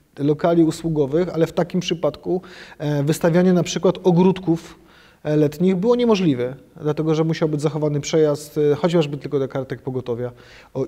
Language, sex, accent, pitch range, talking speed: Polish, male, native, 150-175 Hz, 140 wpm